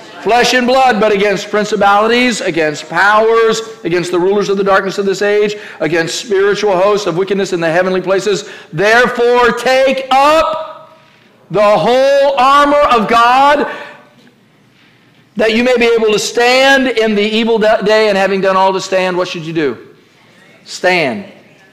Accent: American